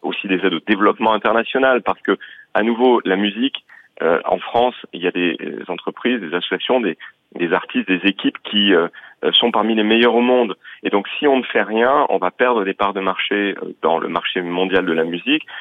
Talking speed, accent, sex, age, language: 215 wpm, French, male, 30-49, French